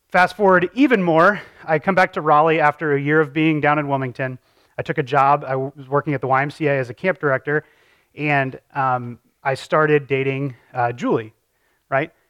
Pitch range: 135-165 Hz